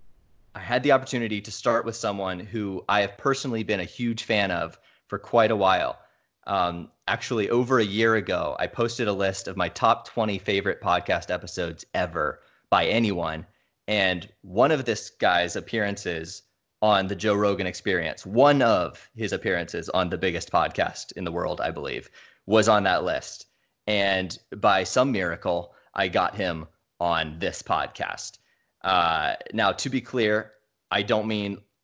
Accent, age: American, 30-49